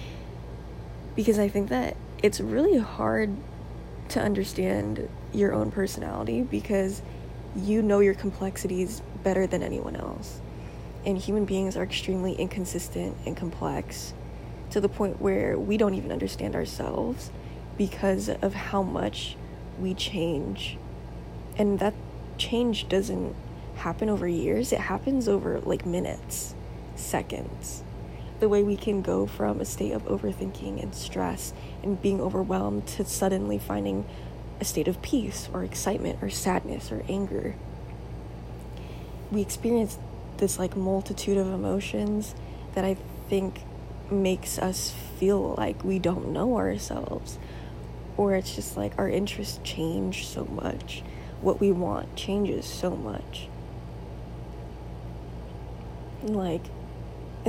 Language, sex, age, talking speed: English, female, 10-29, 125 wpm